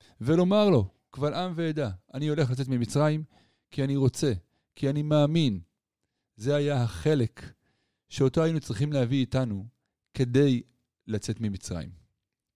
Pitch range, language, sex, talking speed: 115-145 Hz, Hebrew, male, 125 wpm